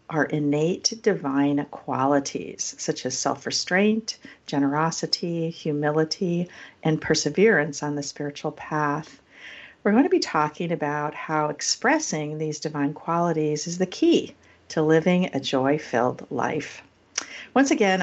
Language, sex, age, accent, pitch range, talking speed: English, female, 50-69, American, 145-175 Hz, 120 wpm